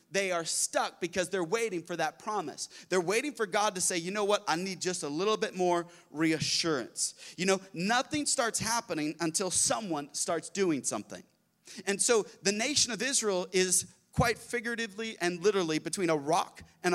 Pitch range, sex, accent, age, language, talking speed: 170-230 Hz, male, American, 30-49, English, 180 wpm